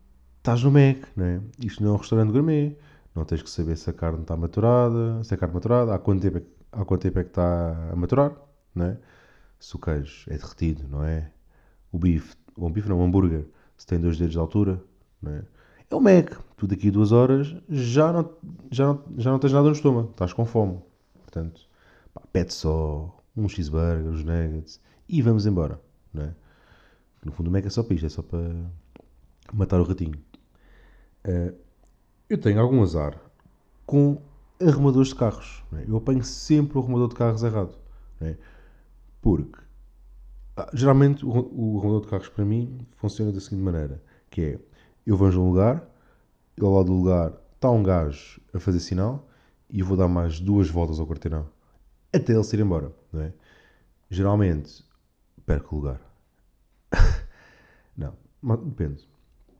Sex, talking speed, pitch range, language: male, 180 wpm, 80-115 Hz, Portuguese